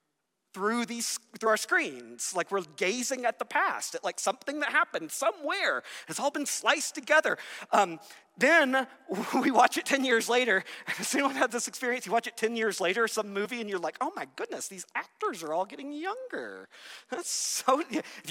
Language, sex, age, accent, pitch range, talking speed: English, male, 40-59, American, 195-280 Hz, 190 wpm